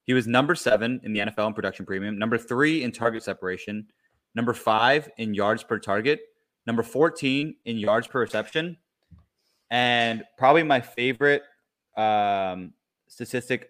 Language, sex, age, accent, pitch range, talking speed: English, male, 20-39, American, 105-135 Hz, 145 wpm